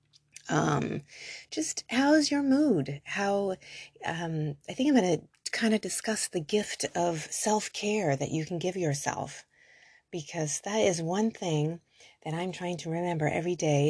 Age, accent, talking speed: 30-49, American, 155 wpm